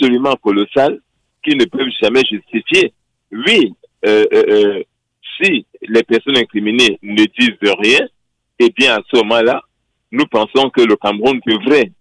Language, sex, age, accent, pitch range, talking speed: French, male, 60-79, French, 110-160 Hz, 150 wpm